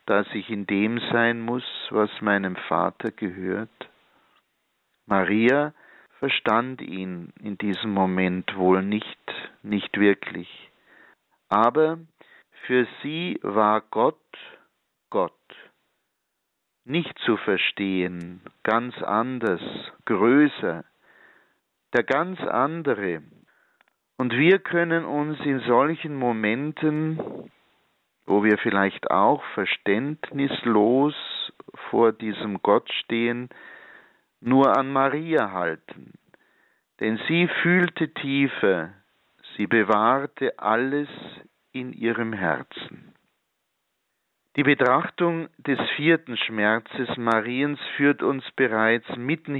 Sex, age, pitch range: male, 50-69, 105-140 Hz